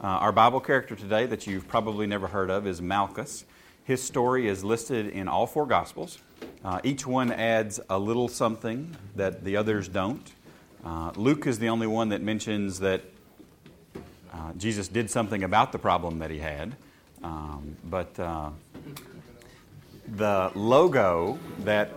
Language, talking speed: English, 155 wpm